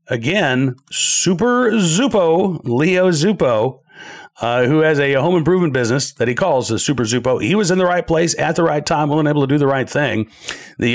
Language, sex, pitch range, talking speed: English, male, 125-170 Hz, 195 wpm